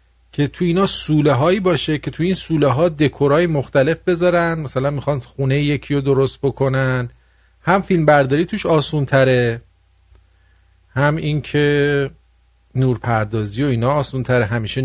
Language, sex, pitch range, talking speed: English, male, 110-155 Hz, 135 wpm